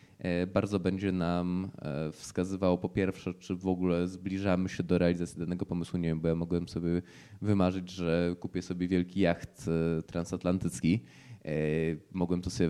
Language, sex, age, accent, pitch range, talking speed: Polish, male, 20-39, native, 85-100 Hz, 145 wpm